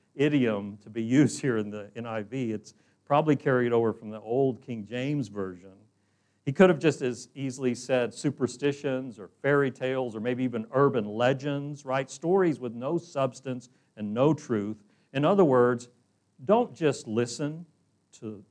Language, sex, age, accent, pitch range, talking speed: English, male, 50-69, American, 105-145 Hz, 160 wpm